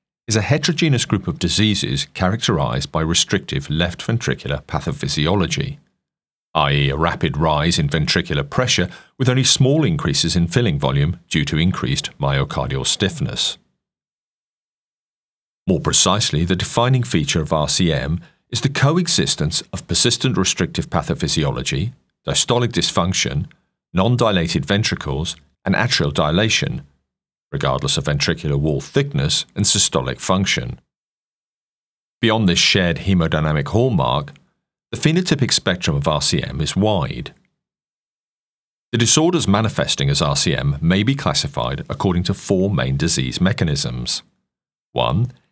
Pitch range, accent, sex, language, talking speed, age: 80-125 Hz, British, male, English, 115 wpm, 40-59